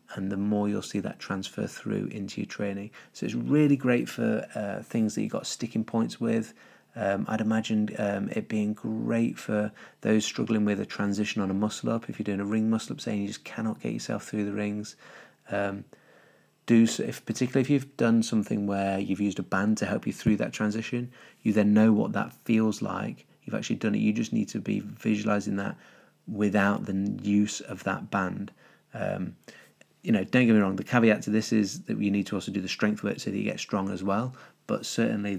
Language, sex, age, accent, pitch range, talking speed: English, male, 30-49, British, 100-110 Hz, 220 wpm